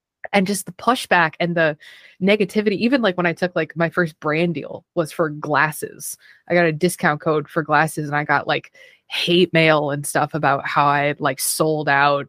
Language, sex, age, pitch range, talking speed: English, female, 20-39, 145-175 Hz, 205 wpm